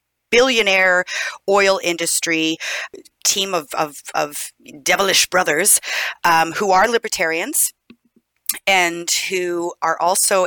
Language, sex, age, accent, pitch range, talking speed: English, female, 30-49, American, 160-195 Hz, 90 wpm